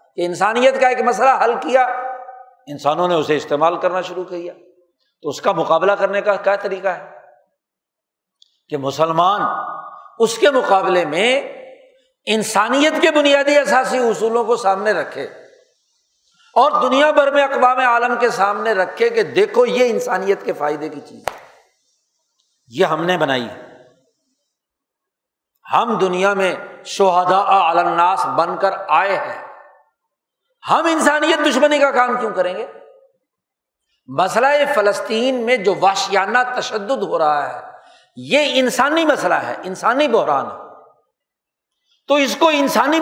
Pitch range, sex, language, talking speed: 195-295 Hz, male, Urdu, 135 wpm